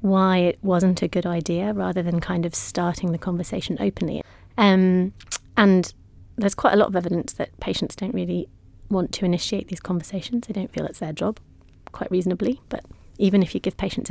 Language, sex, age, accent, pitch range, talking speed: English, female, 30-49, British, 170-200 Hz, 190 wpm